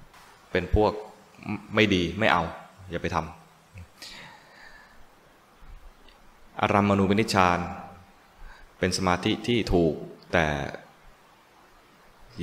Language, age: Thai, 20-39